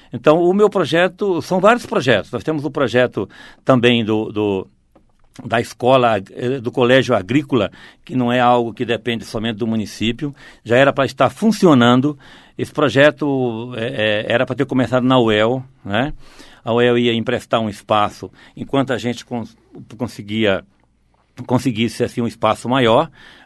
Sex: male